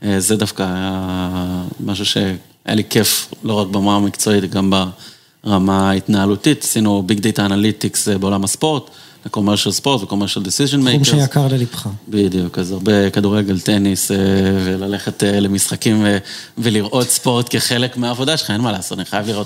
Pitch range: 95-125 Hz